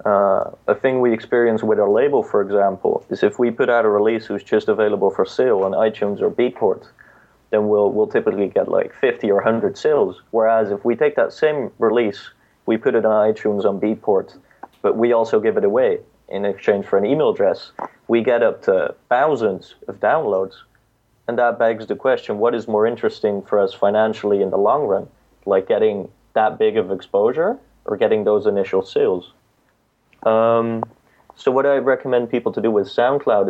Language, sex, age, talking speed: English, male, 30-49, 190 wpm